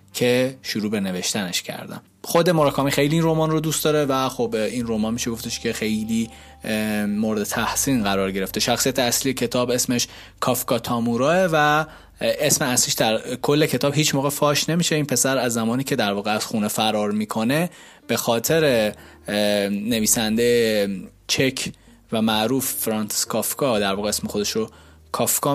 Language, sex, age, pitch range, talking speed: Persian, male, 20-39, 110-135 Hz, 155 wpm